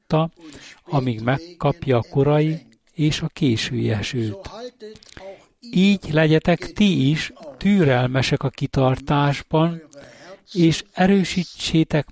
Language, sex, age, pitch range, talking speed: Hungarian, male, 60-79, 145-185 Hz, 85 wpm